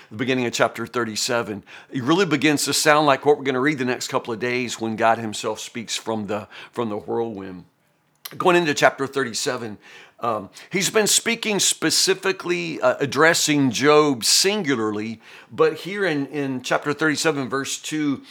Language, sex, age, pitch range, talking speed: English, male, 50-69, 115-150 Hz, 165 wpm